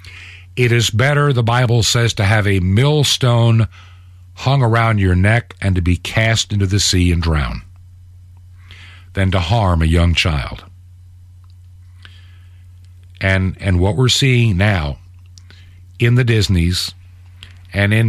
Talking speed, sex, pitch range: 135 wpm, male, 90-115 Hz